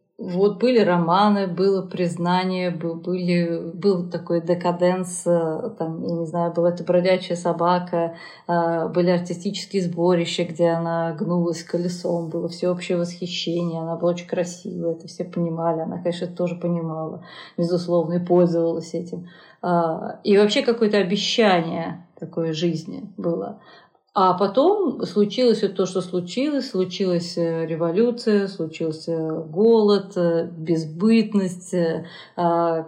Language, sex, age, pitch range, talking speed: Russian, female, 30-49, 170-195 Hz, 115 wpm